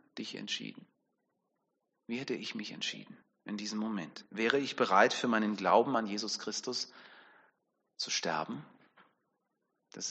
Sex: male